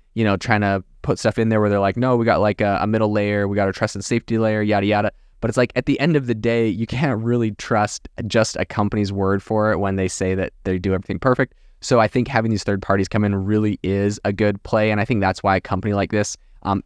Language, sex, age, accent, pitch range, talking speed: English, male, 20-39, American, 95-115 Hz, 280 wpm